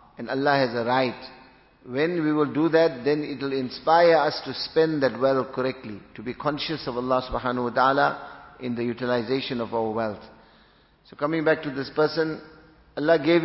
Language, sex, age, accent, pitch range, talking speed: English, male, 50-69, Indian, 125-150 Hz, 185 wpm